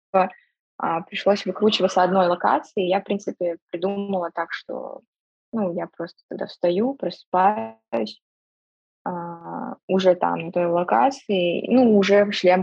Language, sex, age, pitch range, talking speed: Russian, female, 20-39, 180-210 Hz, 115 wpm